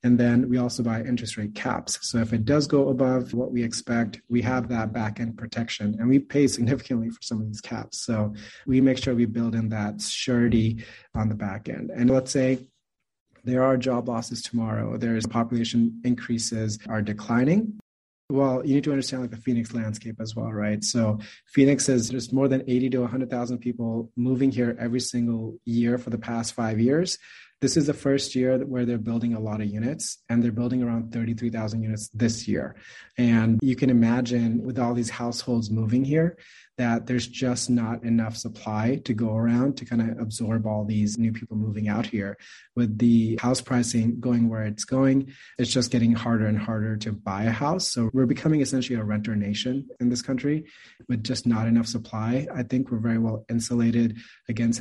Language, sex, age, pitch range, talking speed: English, male, 30-49, 115-125 Hz, 195 wpm